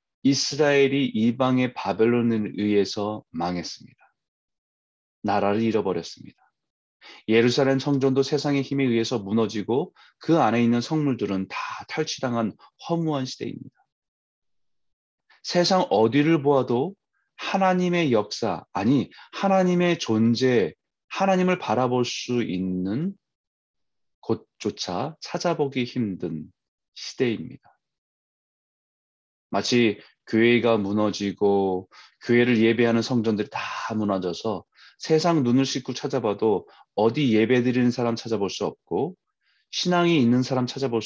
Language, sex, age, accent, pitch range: Korean, male, 30-49, native, 105-140 Hz